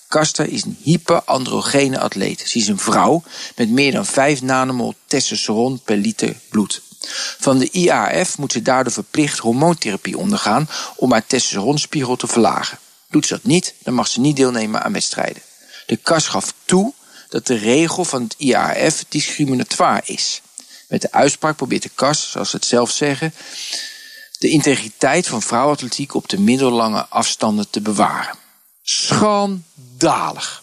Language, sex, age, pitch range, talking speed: Dutch, male, 50-69, 130-185 Hz, 150 wpm